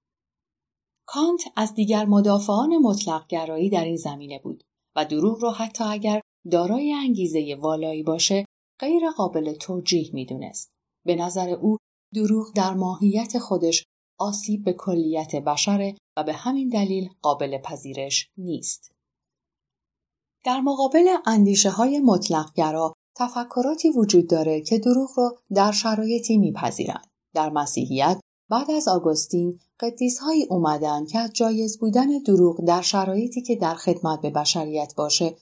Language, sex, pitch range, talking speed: Persian, female, 160-225 Hz, 130 wpm